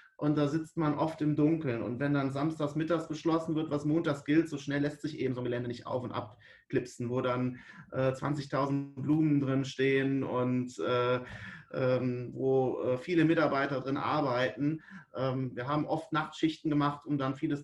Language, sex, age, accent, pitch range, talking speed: German, male, 30-49, German, 130-155 Hz, 185 wpm